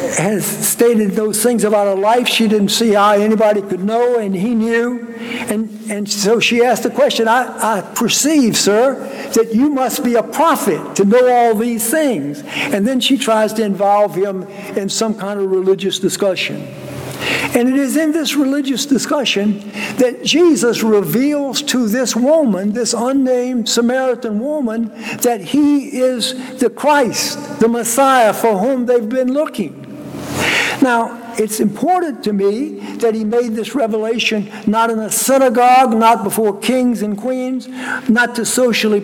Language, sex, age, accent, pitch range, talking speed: English, male, 60-79, American, 205-255 Hz, 160 wpm